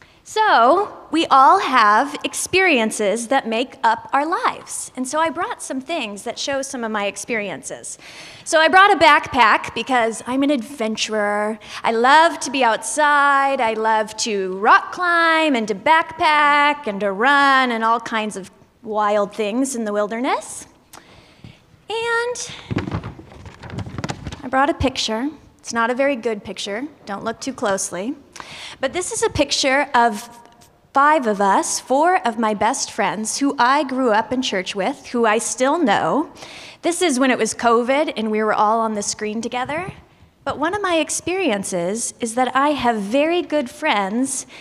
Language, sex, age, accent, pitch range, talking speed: English, female, 20-39, American, 220-295 Hz, 165 wpm